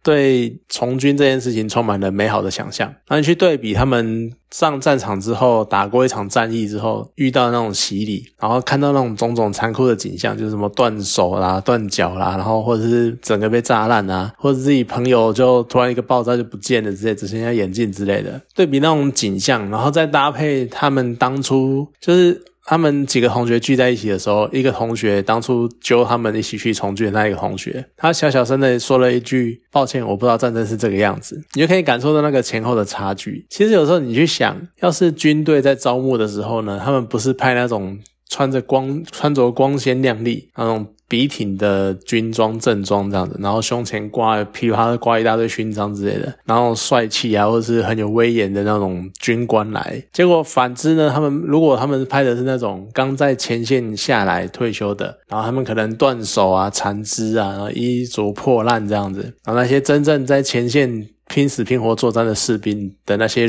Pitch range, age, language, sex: 110-135 Hz, 20-39, Chinese, male